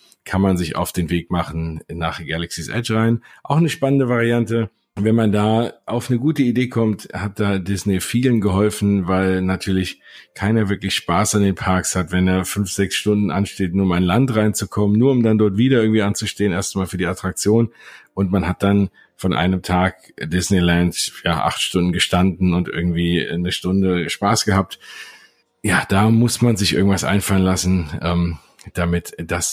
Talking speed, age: 180 wpm, 50-69